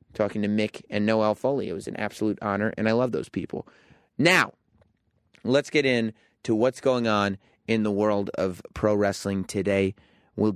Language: English